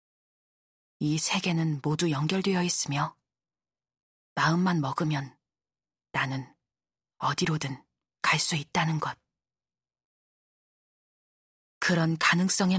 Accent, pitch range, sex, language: native, 150-185 Hz, female, Korean